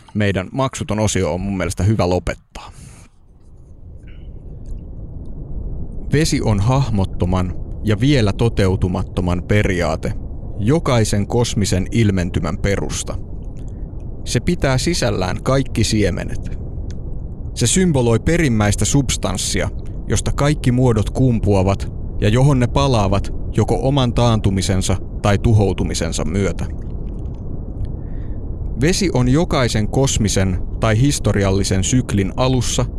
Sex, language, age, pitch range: male, Finnish, 30-49, 95-120 Hz